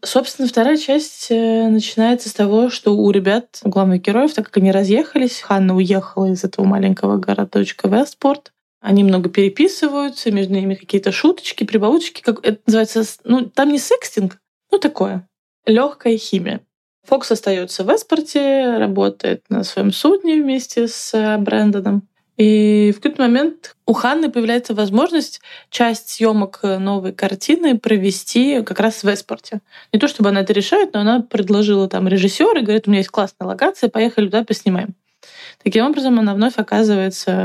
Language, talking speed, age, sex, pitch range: Russian, 155 wpm, 20-39, female, 195-245 Hz